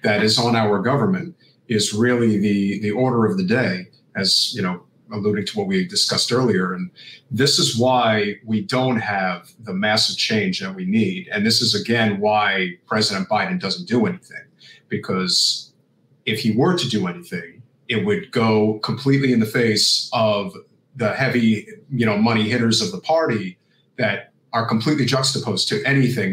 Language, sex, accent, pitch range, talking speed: English, male, American, 105-140 Hz, 170 wpm